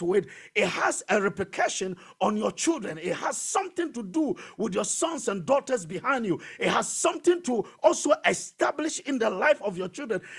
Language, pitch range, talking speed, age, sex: English, 205-300 Hz, 185 wpm, 50-69, male